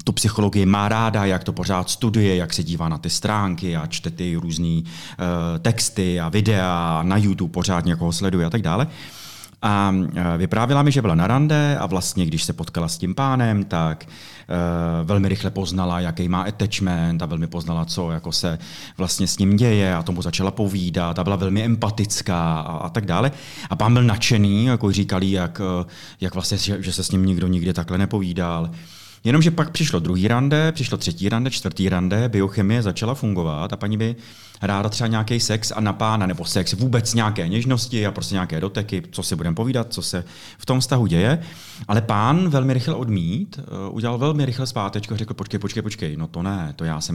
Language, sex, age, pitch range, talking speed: Czech, male, 30-49, 85-115 Hz, 200 wpm